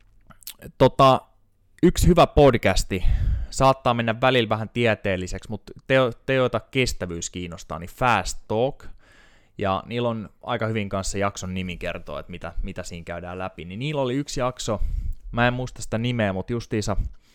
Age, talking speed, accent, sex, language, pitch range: 20-39, 155 wpm, native, male, Finnish, 90-115 Hz